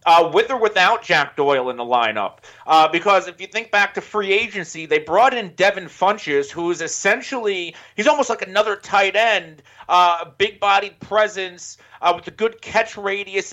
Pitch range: 170-210 Hz